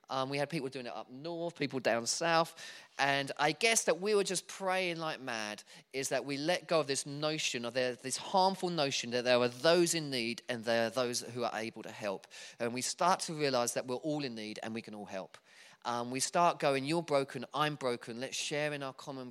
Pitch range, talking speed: 120-150 Hz, 235 wpm